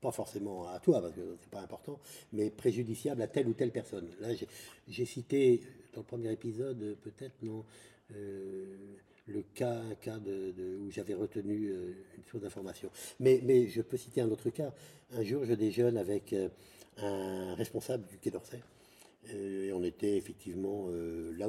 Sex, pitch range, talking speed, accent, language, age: male, 100-130 Hz, 180 wpm, French, French, 60-79